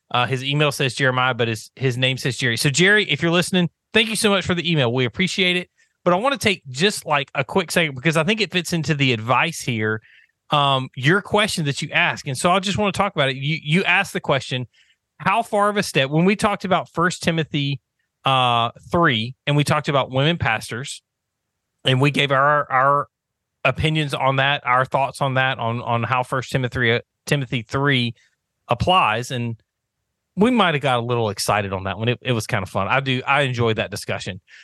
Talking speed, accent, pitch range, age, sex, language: 220 wpm, American, 125-165 Hz, 30-49, male, English